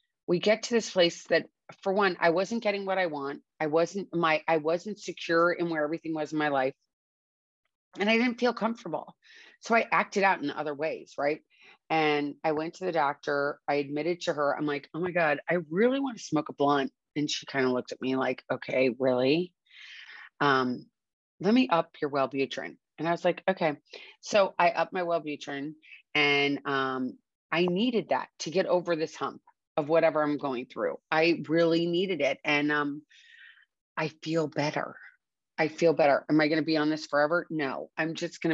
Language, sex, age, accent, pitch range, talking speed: English, female, 30-49, American, 145-180 Hz, 200 wpm